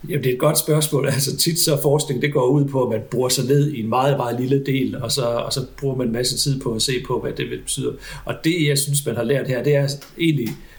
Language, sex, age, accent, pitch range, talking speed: Danish, male, 60-79, native, 120-145 Hz, 285 wpm